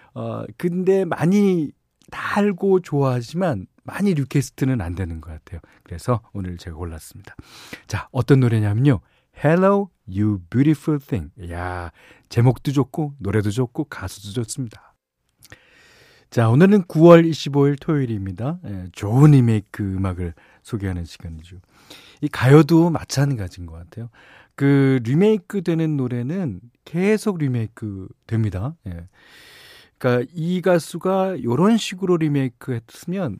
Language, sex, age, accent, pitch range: Korean, male, 40-59, native, 95-160 Hz